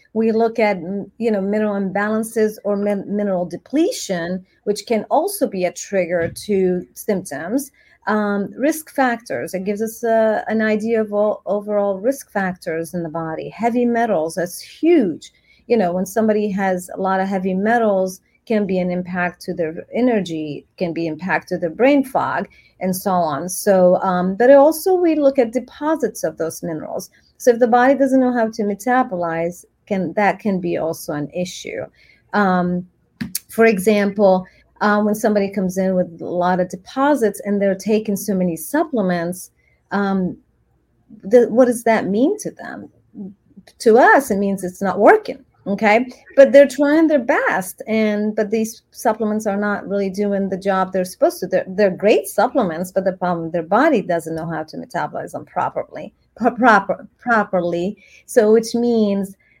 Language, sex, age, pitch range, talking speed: English, female, 30-49, 185-230 Hz, 170 wpm